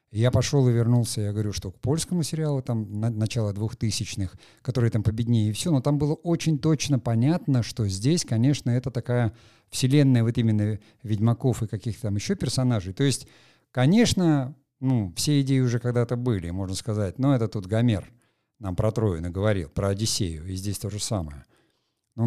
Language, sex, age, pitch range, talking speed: Russian, male, 50-69, 105-130 Hz, 175 wpm